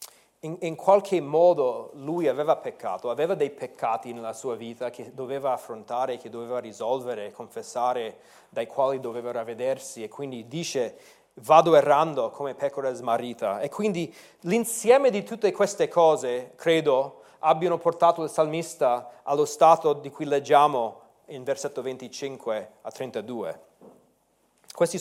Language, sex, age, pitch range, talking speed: Italian, male, 30-49, 135-180 Hz, 130 wpm